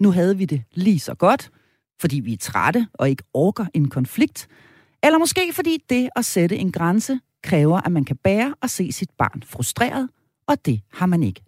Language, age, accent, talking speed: Danish, 40-59, native, 205 wpm